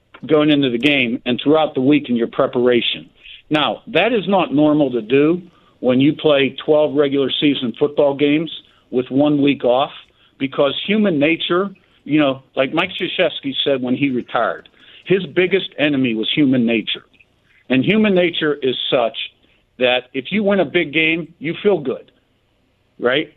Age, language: 50-69, English